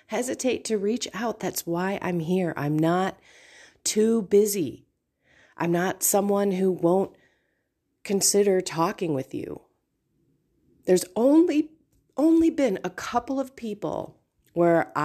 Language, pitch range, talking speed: English, 150-200 Hz, 120 wpm